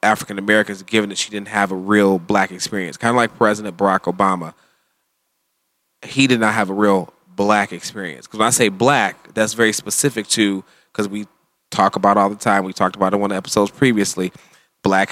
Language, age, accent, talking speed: English, 20-39, American, 205 wpm